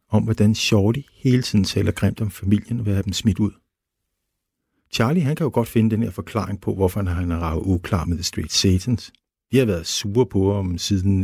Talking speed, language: 220 wpm, Danish